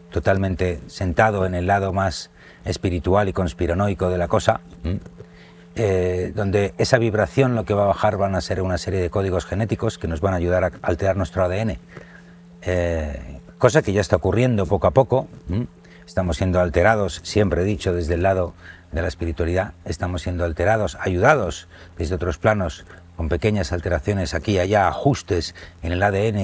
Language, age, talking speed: Spanish, 60-79, 175 wpm